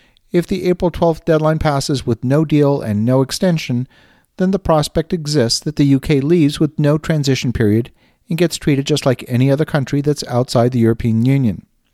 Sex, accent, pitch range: male, American, 125-155 Hz